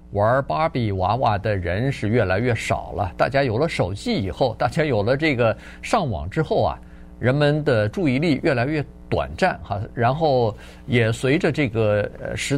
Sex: male